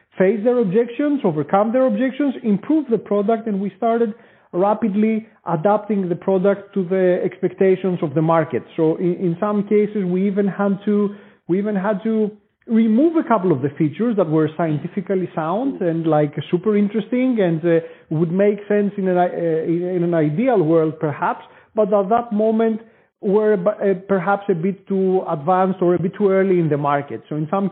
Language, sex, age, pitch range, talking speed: English, male, 40-59, 180-225 Hz, 175 wpm